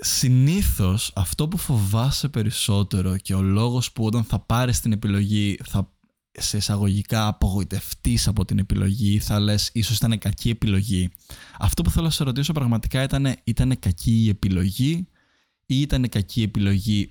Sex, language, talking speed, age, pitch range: male, Greek, 165 wpm, 20-39, 100-120 Hz